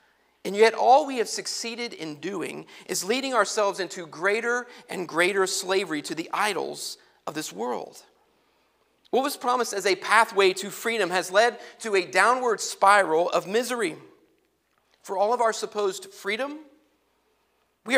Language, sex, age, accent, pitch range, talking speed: English, male, 40-59, American, 190-245 Hz, 150 wpm